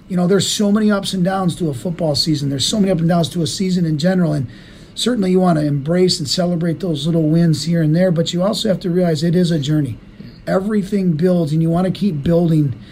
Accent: American